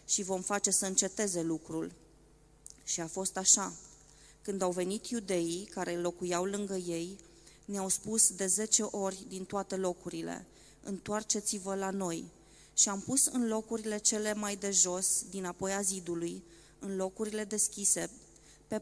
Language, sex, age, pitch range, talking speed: Romanian, female, 20-39, 180-205 Hz, 145 wpm